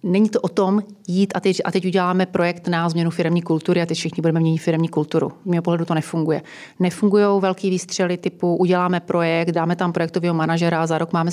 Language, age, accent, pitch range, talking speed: Czech, 30-49, native, 170-190 Hz, 205 wpm